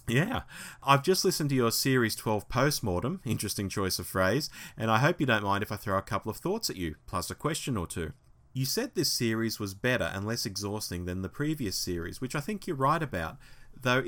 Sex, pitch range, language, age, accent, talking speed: male, 95-125 Hz, English, 30-49, Australian, 225 wpm